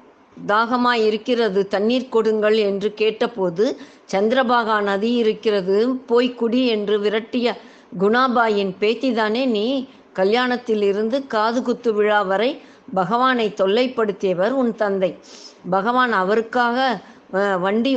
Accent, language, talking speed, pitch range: native, Tamil, 90 wpm, 200-245 Hz